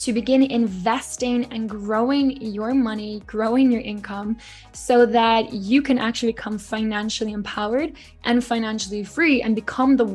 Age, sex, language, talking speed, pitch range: 10-29, female, English, 140 wpm, 215-245 Hz